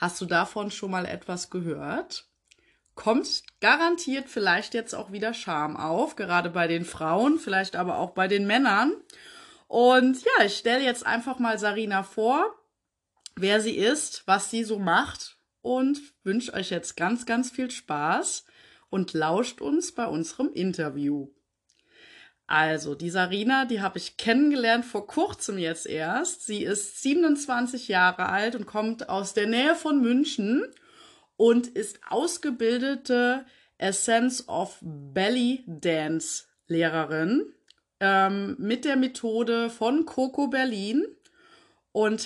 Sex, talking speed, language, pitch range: female, 135 wpm, German, 195-265 Hz